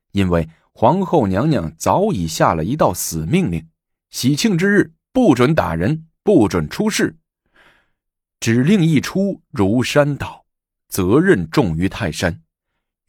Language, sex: Chinese, male